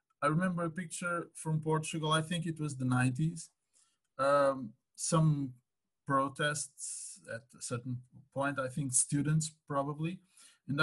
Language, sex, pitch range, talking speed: English, male, 120-160 Hz, 135 wpm